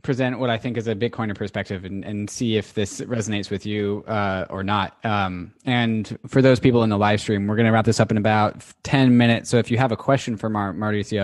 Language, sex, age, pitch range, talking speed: English, male, 20-39, 105-120 Hz, 245 wpm